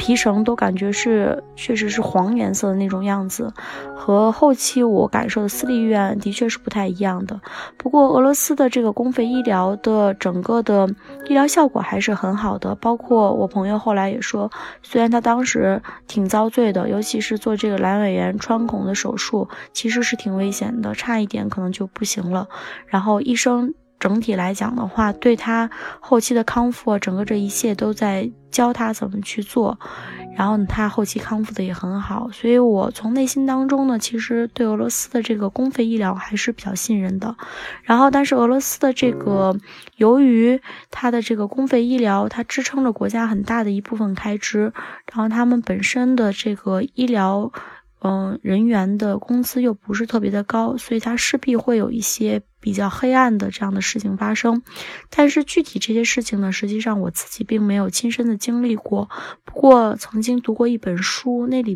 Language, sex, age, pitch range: Chinese, female, 20-39, 200-240 Hz